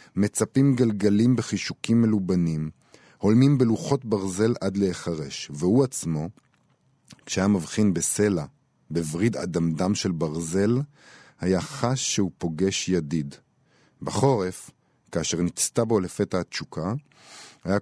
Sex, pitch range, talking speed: male, 85-110 Hz, 100 wpm